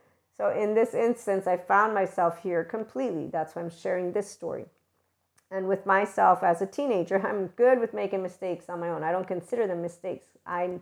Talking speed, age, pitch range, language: 195 wpm, 40-59, 185-220 Hz, English